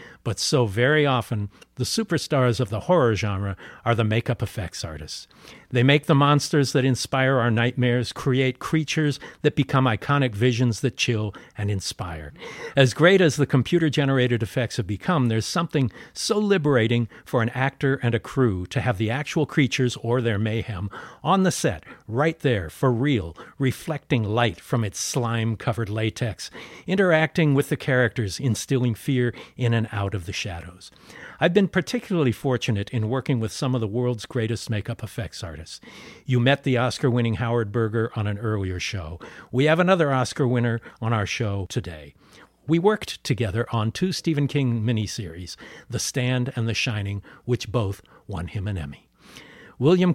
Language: English